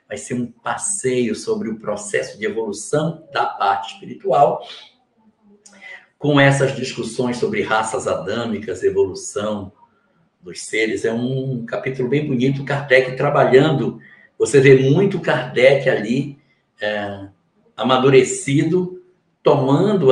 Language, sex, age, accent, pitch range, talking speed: Portuguese, male, 60-79, Brazilian, 130-215 Hz, 110 wpm